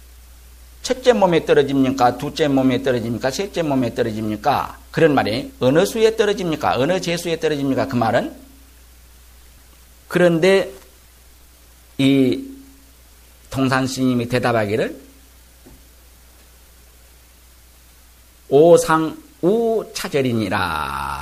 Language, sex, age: Korean, male, 50-69